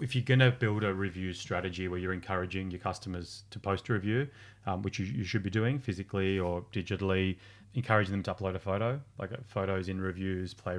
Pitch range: 95-105 Hz